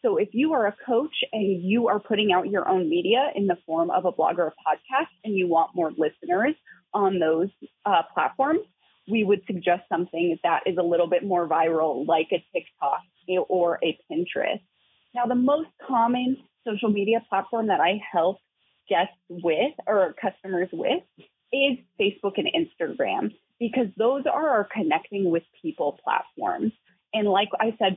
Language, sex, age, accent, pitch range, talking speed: English, female, 30-49, American, 185-255 Hz, 170 wpm